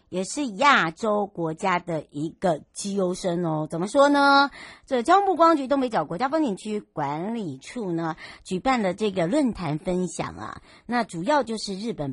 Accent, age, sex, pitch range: American, 60-79, male, 150-195 Hz